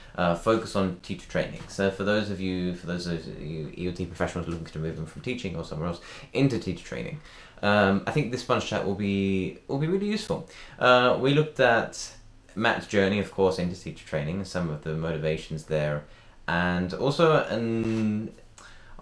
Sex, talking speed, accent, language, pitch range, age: male, 185 wpm, British, English, 85-110 Hz, 20-39